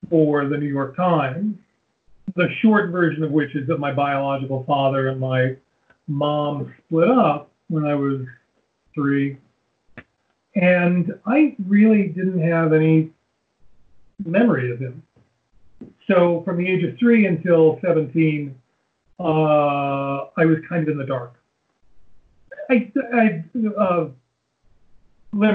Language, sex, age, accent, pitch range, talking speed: English, male, 40-59, American, 135-170 Hz, 120 wpm